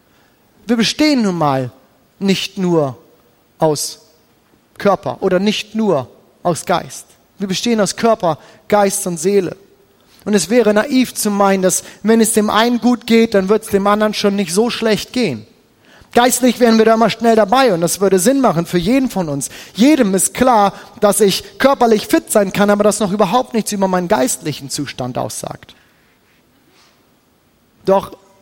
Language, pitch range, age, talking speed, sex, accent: German, 190-240 Hz, 30-49, 165 wpm, male, German